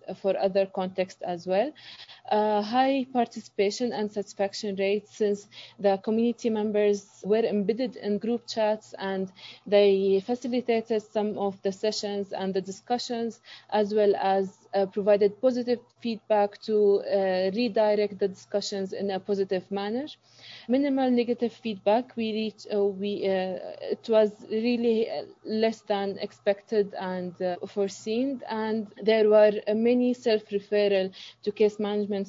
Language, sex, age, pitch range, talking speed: English, female, 20-39, 195-220 Hz, 135 wpm